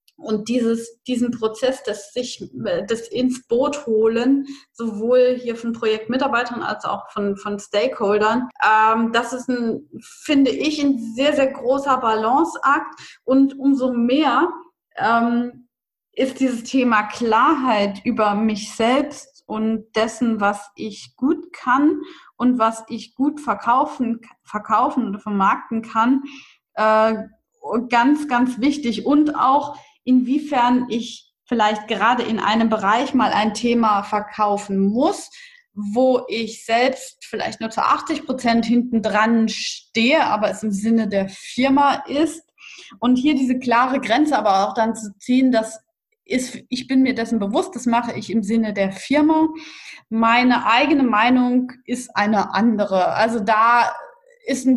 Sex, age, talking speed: female, 20-39, 135 wpm